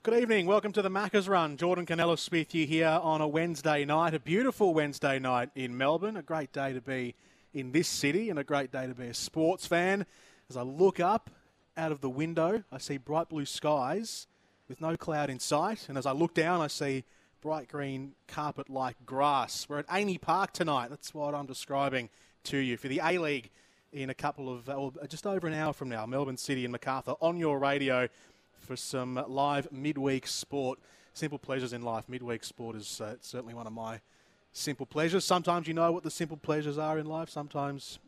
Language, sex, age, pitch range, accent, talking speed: English, male, 30-49, 130-160 Hz, Australian, 205 wpm